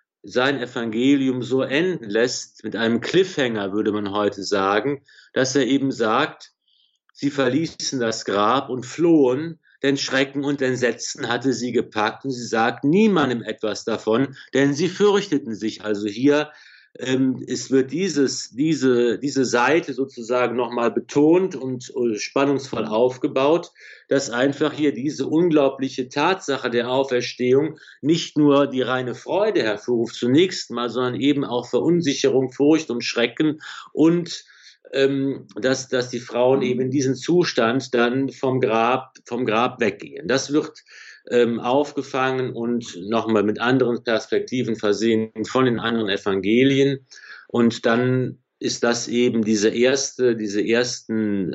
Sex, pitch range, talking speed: male, 115-140 Hz, 135 wpm